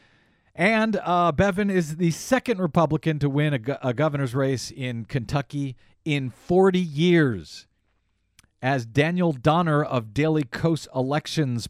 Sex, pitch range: male, 120-170 Hz